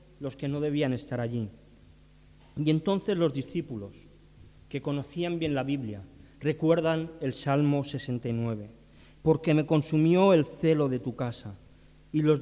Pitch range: 115-155 Hz